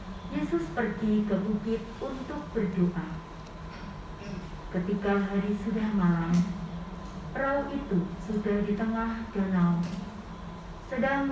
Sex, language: female, Indonesian